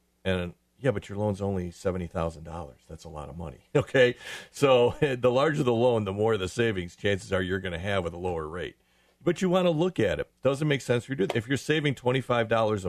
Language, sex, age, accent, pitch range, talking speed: English, male, 40-59, American, 95-130 Hz, 240 wpm